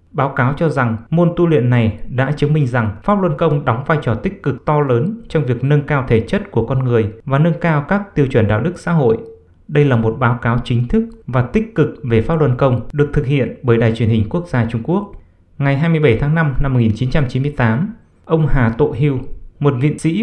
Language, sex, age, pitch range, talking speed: English, male, 20-39, 120-155 Hz, 235 wpm